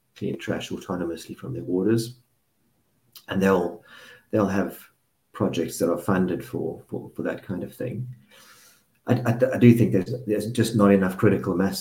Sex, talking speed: male, 165 wpm